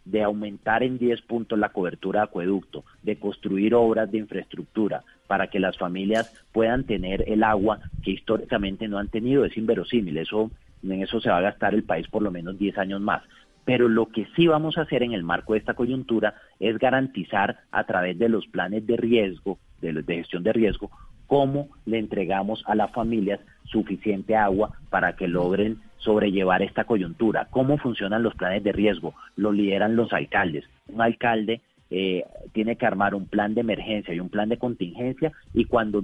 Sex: male